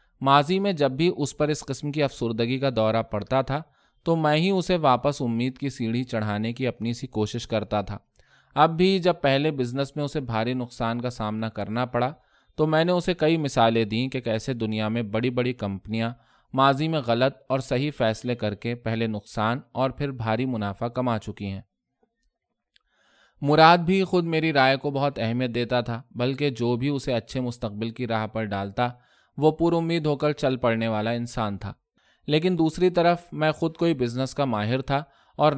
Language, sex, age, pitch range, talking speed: Urdu, male, 20-39, 115-145 Hz, 190 wpm